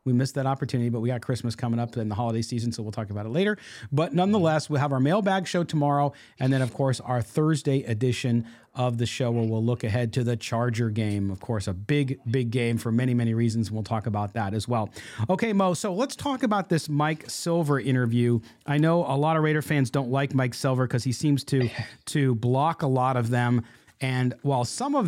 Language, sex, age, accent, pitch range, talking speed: English, male, 40-59, American, 120-155 Hz, 235 wpm